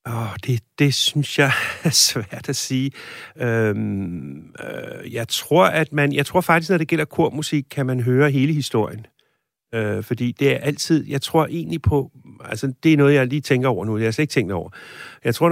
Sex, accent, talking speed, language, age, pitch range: male, native, 210 wpm, Danish, 60-79, 110-140 Hz